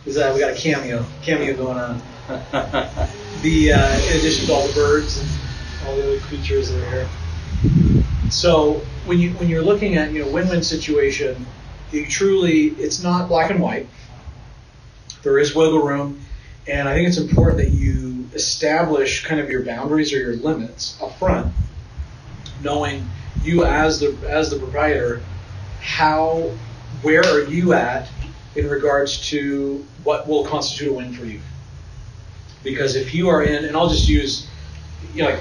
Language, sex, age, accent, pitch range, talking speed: English, male, 30-49, American, 115-155 Hz, 165 wpm